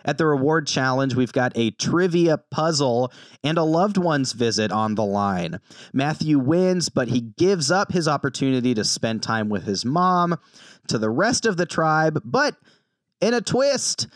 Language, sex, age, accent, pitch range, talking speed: English, male, 30-49, American, 125-180 Hz, 175 wpm